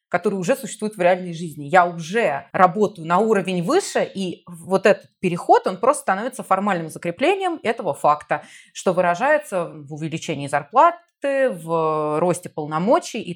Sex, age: female, 20-39